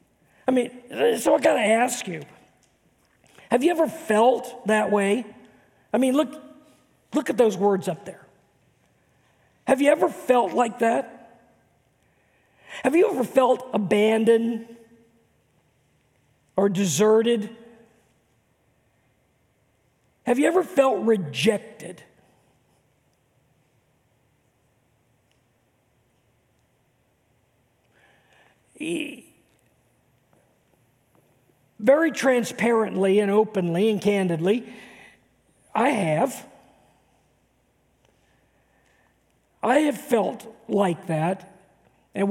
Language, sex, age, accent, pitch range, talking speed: English, male, 50-69, American, 185-255 Hz, 80 wpm